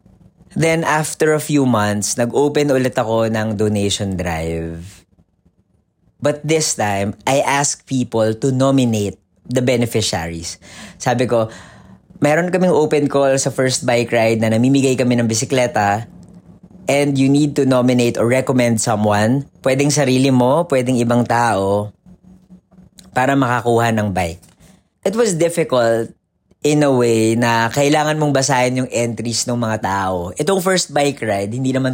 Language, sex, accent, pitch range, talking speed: English, female, Filipino, 110-135 Hz, 140 wpm